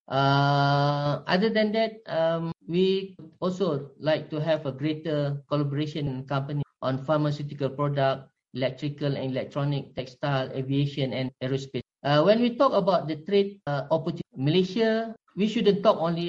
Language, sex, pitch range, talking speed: Spanish, male, 140-185 Hz, 140 wpm